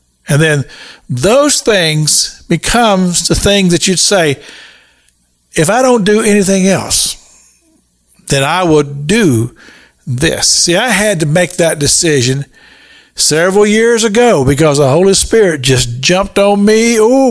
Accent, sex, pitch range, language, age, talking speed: American, male, 135-210 Hz, English, 60-79, 140 wpm